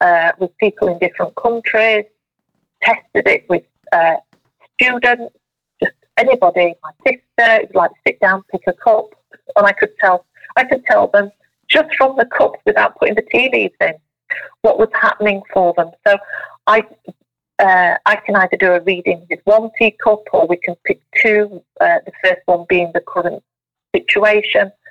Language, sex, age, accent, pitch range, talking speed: English, female, 40-59, British, 180-225 Hz, 170 wpm